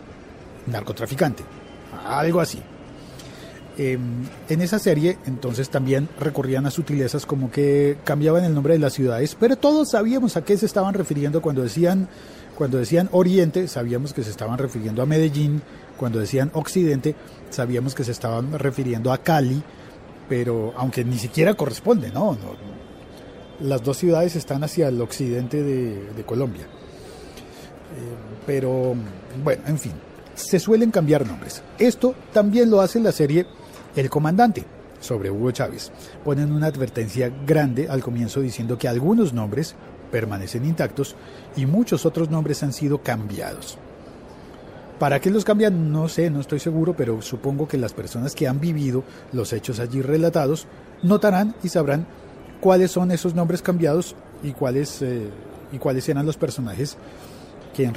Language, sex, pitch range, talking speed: Spanish, male, 125-165 Hz, 150 wpm